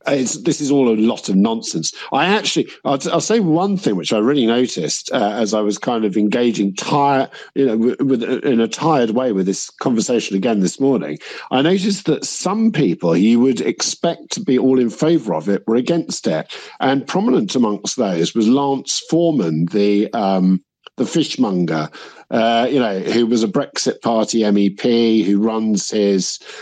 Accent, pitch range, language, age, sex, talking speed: British, 110-160 Hz, English, 50-69, male, 185 wpm